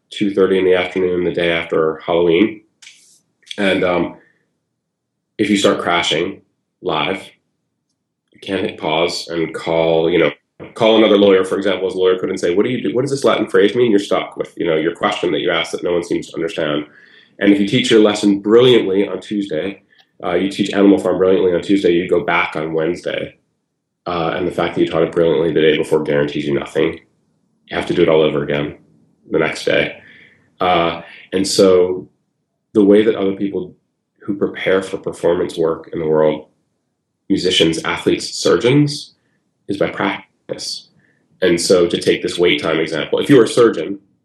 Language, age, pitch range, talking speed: English, 30-49, 80-100 Hz, 195 wpm